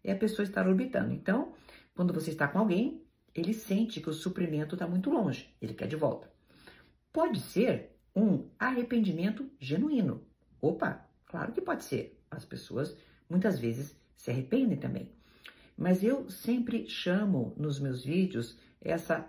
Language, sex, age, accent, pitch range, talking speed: Portuguese, female, 50-69, Brazilian, 145-230 Hz, 150 wpm